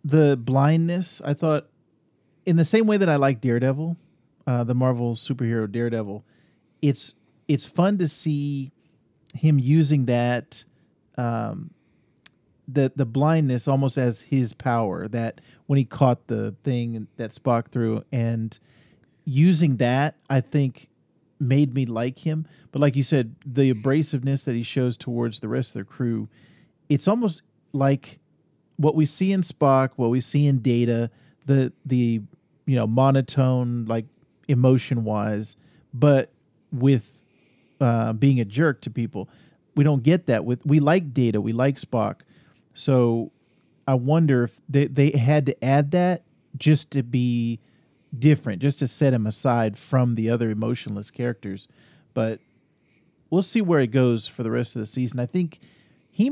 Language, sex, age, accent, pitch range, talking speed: English, male, 40-59, American, 120-150 Hz, 155 wpm